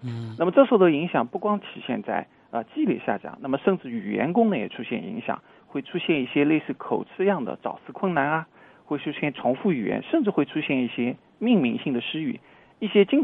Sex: male